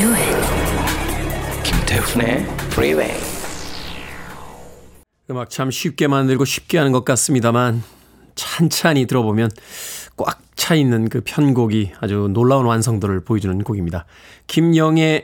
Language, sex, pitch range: Korean, male, 115-160 Hz